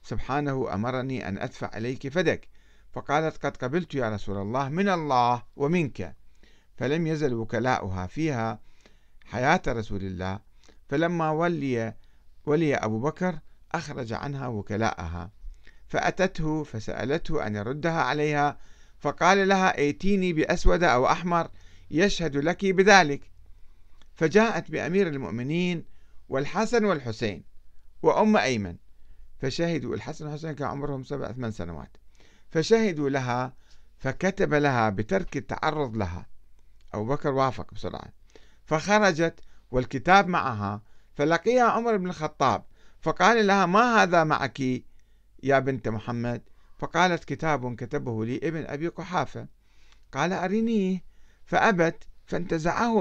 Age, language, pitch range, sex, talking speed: 50-69, Arabic, 110-165 Hz, male, 105 wpm